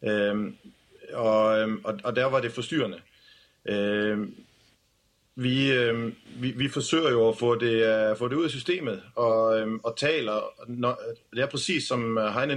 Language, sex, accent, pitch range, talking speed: Danish, male, native, 110-135 Hz, 150 wpm